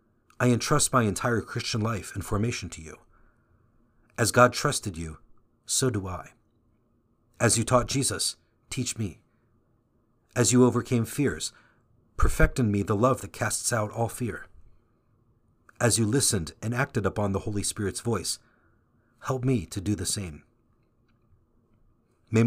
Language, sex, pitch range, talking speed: English, male, 100-120 Hz, 145 wpm